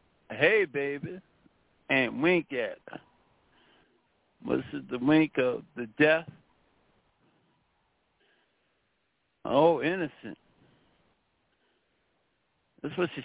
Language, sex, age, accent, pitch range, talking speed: English, male, 50-69, American, 155-255 Hz, 80 wpm